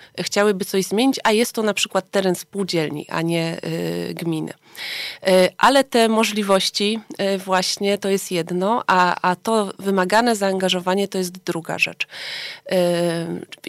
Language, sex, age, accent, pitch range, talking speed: Polish, female, 30-49, native, 185-230 Hz, 130 wpm